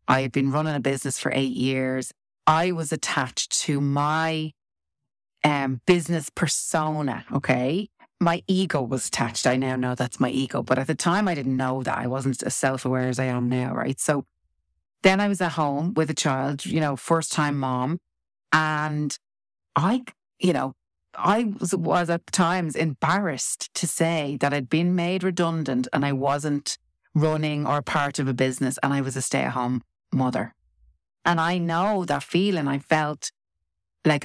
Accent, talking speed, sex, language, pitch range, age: Irish, 170 wpm, female, English, 130-165 Hz, 30-49